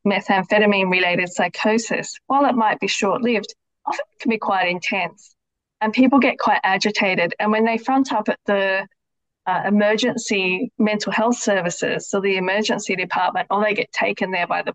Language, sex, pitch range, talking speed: English, female, 195-235 Hz, 165 wpm